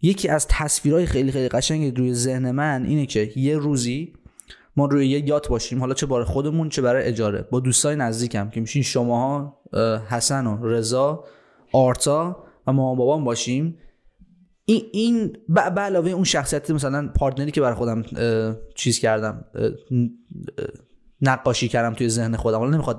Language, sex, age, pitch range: Persian, male, 20-39, 125-155 Hz